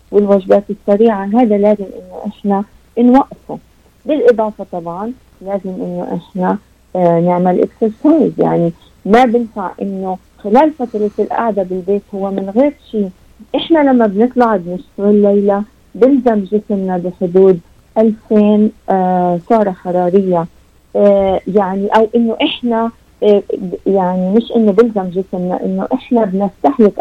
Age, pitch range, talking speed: 50-69, 185-225 Hz, 120 wpm